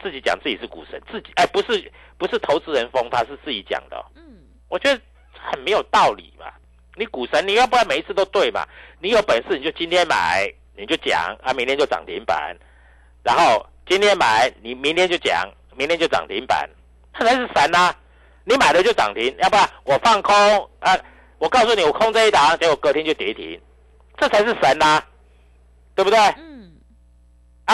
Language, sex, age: Chinese, male, 50-69